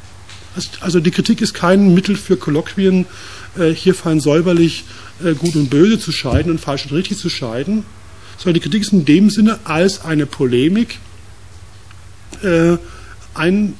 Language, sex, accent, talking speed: German, male, German, 145 wpm